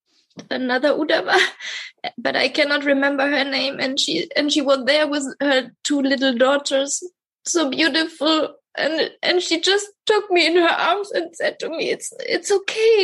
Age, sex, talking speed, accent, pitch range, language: 20-39, female, 170 wpm, German, 285-360 Hz, English